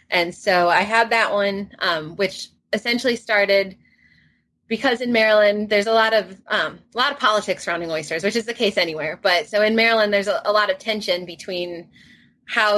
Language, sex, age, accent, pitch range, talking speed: English, female, 20-39, American, 180-215 Hz, 190 wpm